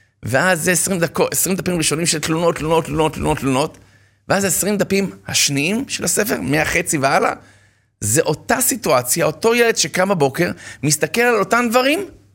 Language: Hebrew